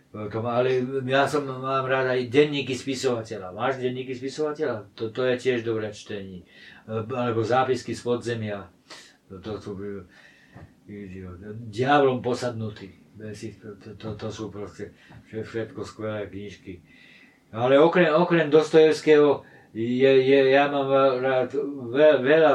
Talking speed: 120 wpm